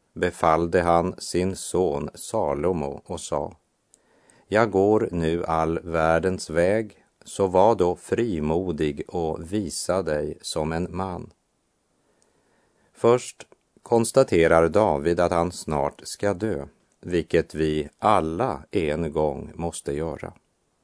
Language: Swedish